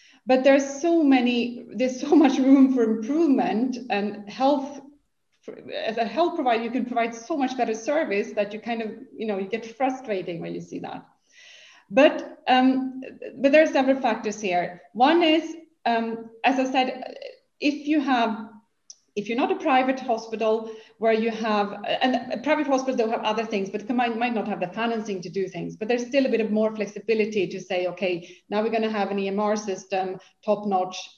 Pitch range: 200-255 Hz